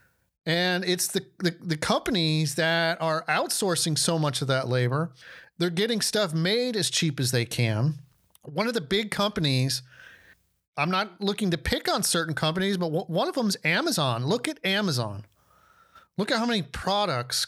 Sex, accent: male, American